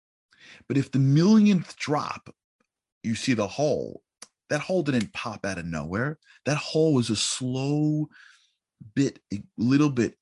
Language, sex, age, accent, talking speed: English, male, 30-49, American, 145 wpm